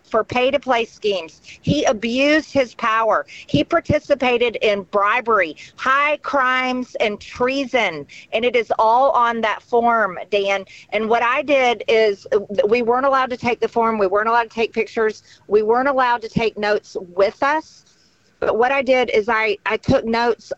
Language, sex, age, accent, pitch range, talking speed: English, female, 50-69, American, 215-255 Hz, 170 wpm